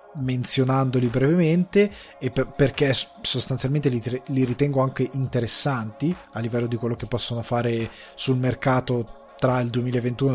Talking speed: 130 wpm